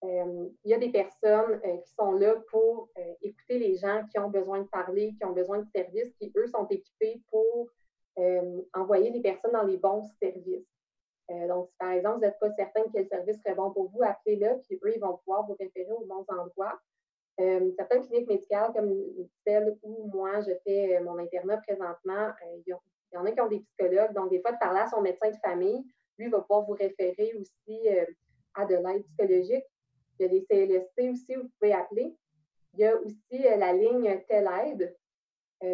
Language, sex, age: French, female, 30-49